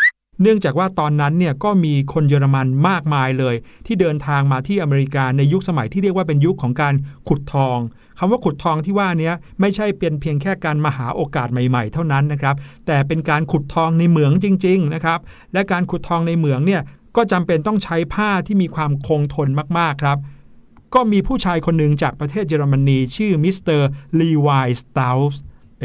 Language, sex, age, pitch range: Thai, male, 60-79, 145-185 Hz